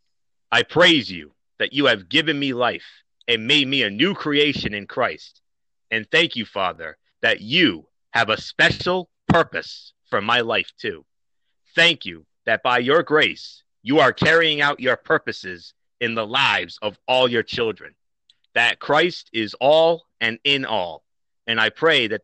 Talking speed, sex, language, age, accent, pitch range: 165 wpm, male, English, 30-49, American, 110-145 Hz